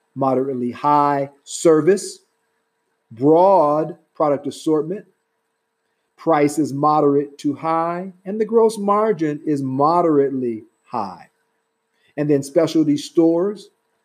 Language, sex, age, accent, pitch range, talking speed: English, male, 50-69, American, 130-170 Hz, 90 wpm